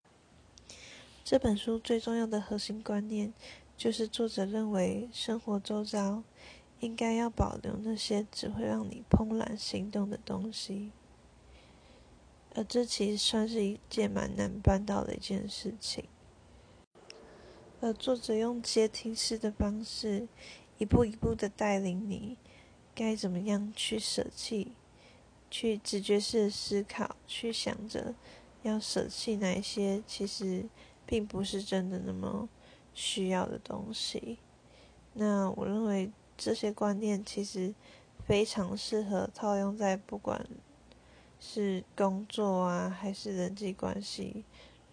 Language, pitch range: Chinese, 195-220 Hz